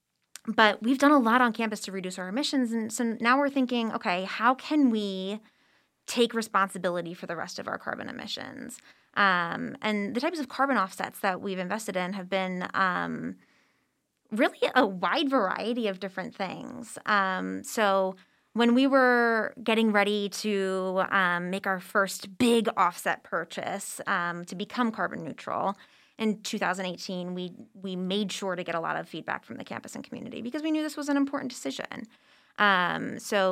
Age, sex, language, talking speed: 20-39, female, English, 175 wpm